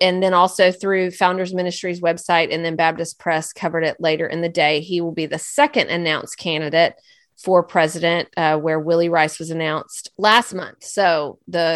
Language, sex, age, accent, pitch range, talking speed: English, female, 30-49, American, 170-205 Hz, 185 wpm